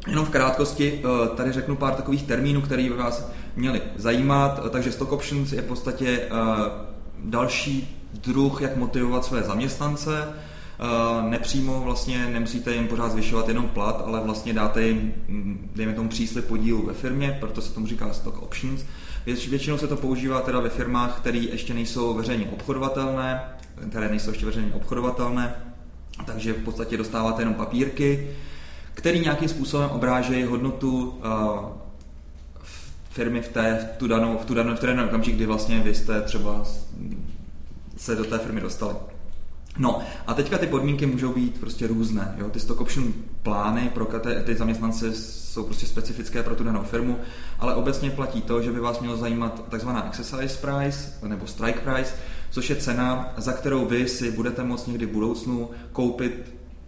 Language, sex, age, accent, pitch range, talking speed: Czech, male, 20-39, native, 110-130 Hz, 155 wpm